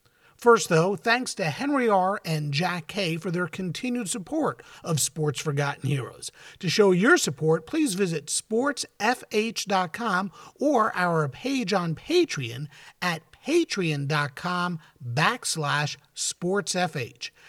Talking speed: 110 wpm